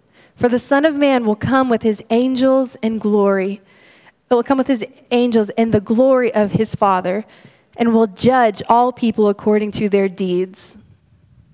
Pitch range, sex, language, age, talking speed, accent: 210-265 Hz, female, English, 20-39, 170 wpm, American